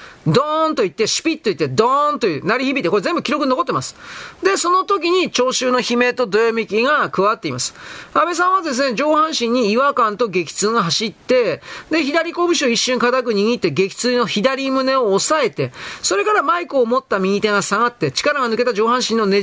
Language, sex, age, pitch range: Japanese, male, 40-59, 215-280 Hz